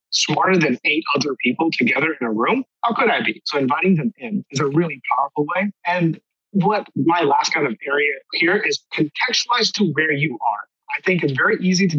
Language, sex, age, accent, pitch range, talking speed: English, male, 30-49, American, 155-205 Hz, 210 wpm